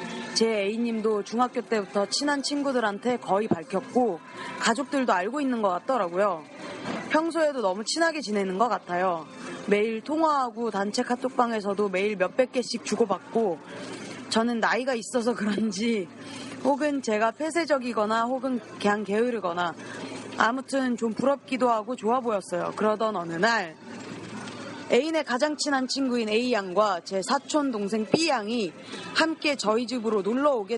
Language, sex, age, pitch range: Korean, female, 30-49, 215-265 Hz